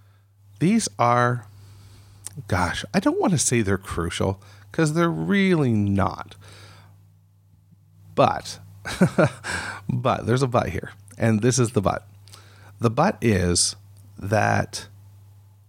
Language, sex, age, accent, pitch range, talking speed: English, male, 40-59, American, 100-105 Hz, 110 wpm